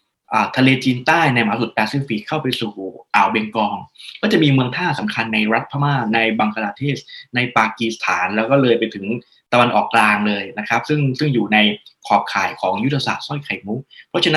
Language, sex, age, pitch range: Thai, male, 20-39, 115-145 Hz